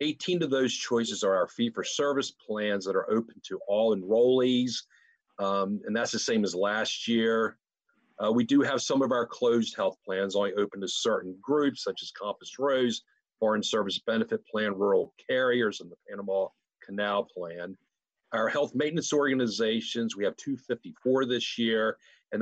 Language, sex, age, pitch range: English, male, 50-69, 105-155 Hz